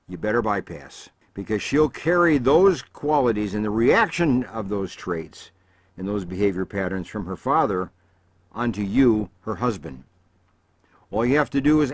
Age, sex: 60-79, male